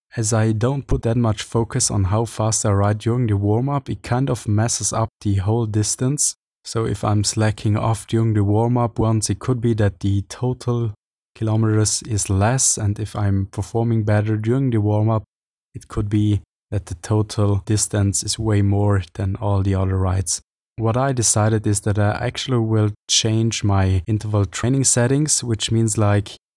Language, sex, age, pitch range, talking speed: English, male, 20-39, 105-115 Hz, 180 wpm